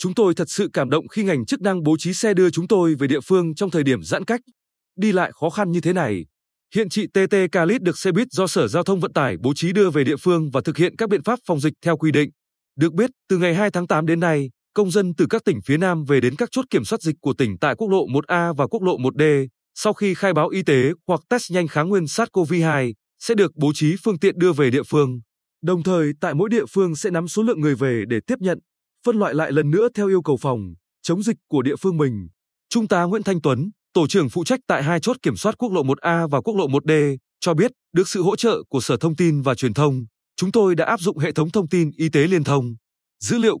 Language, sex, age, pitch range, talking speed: Vietnamese, male, 20-39, 145-200 Hz, 270 wpm